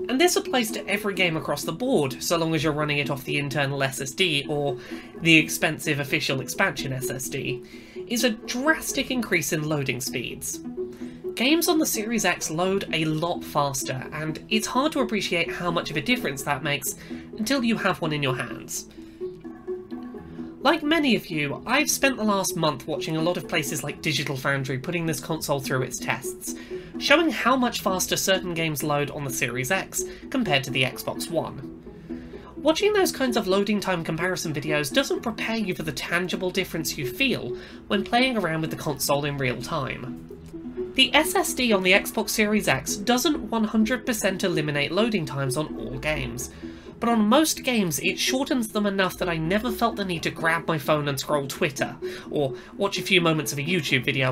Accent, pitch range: British, 140-215 Hz